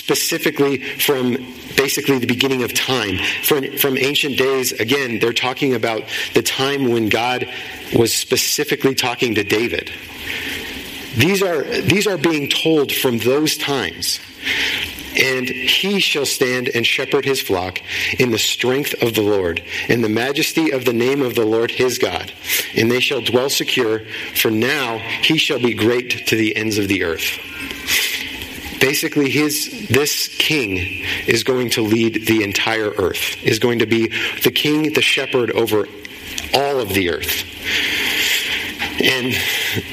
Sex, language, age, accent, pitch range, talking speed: male, English, 40-59, American, 110-135 Hz, 150 wpm